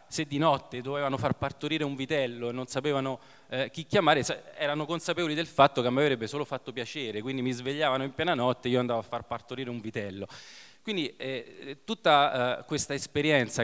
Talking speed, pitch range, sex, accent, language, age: 200 wpm, 115-140 Hz, male, native, Italian, 20-39